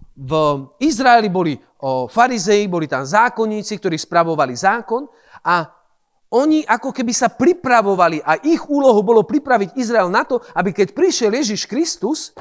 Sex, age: male, 40-59